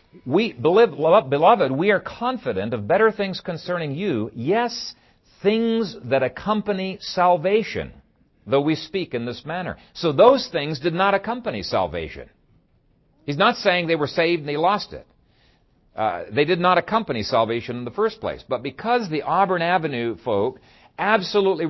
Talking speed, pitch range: 150 wpm, 125-190 Hz